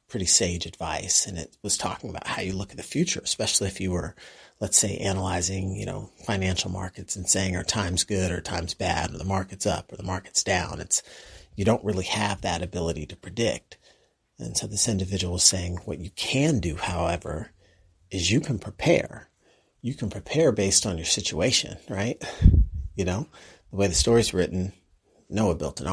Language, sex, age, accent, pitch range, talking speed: English, male, 40-59, American, 90-105 Hz, 190 wpm